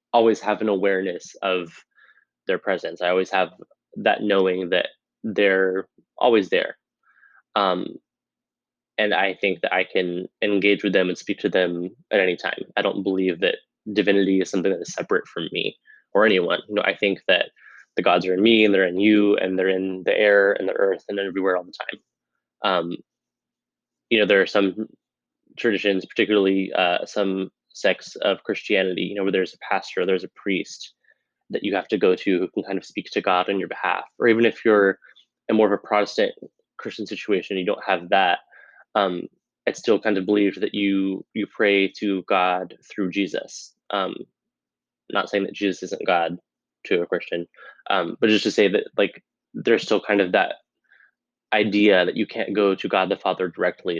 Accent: American